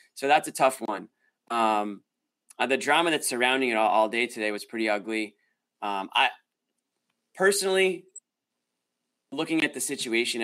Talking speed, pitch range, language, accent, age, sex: 150 wpm, 105-125 Hz, English, American, 20-39, male